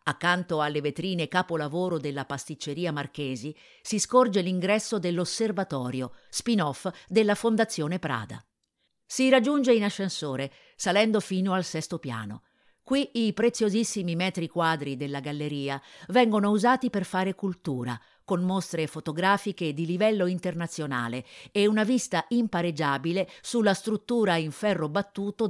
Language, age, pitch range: Italian, 50-69, 155-215 Hz